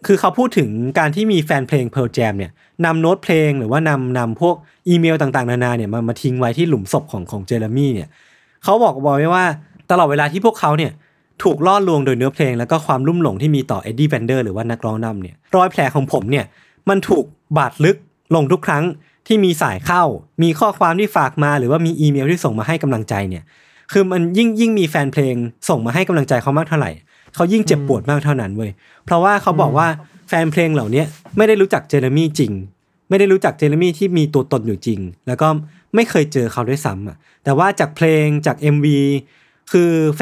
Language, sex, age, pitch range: Thai, male, 20-39, 130-170 Hz